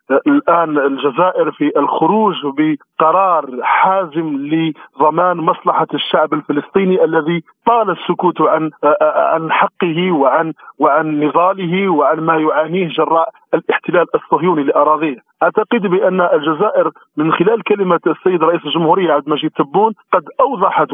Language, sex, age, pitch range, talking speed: Arabic, male, 40-59, 160-190 Hz, 110 wpm